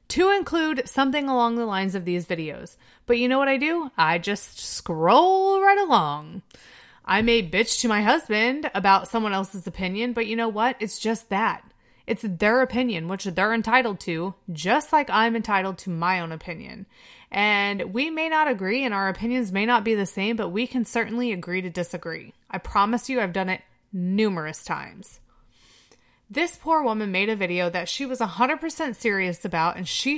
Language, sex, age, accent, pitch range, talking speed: English, female, 20-39, American, 190-250 Hz, 185 wpm